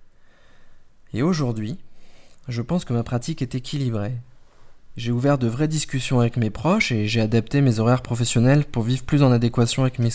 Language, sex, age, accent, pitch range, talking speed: French, male, 20-39, French, 115-140 Hz, 175 wpm